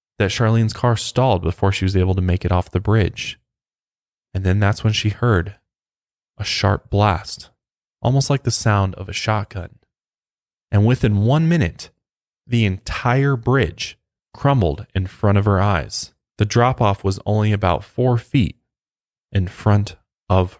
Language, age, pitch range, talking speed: English, 20-39, 95-120 Hz, 155 wpm